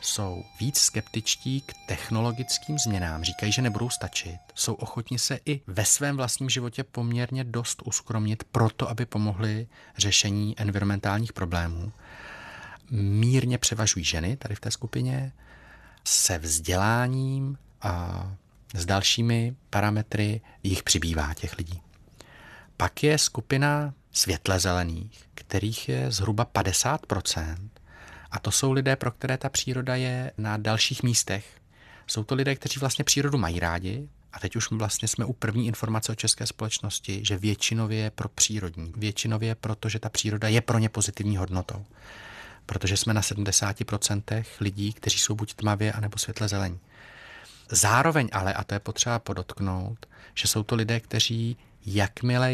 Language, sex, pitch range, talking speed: Czech, male, 100-120 Hz, 140 wpm